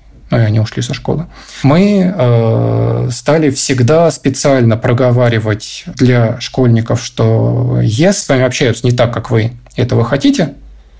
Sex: male